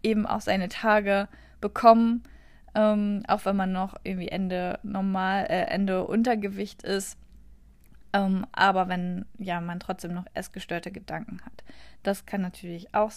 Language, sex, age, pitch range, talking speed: German, female, 20-39, 180-205 Hz, 145 wpm